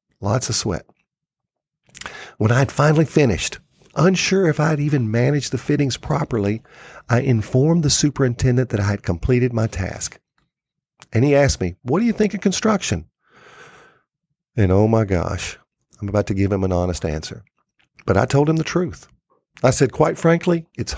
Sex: male